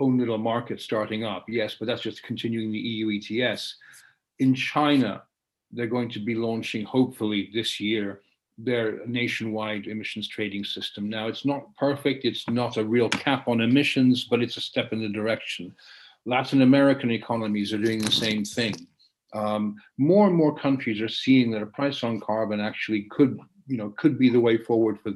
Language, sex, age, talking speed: English, male, 50-69, 180 wpm